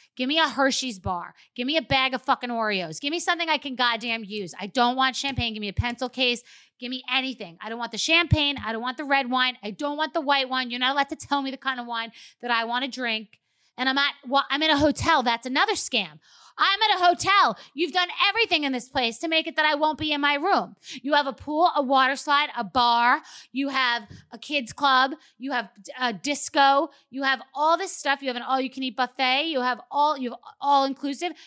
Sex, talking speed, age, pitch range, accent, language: female, 245 wpm, 30-49, 225-280 Hz, American, English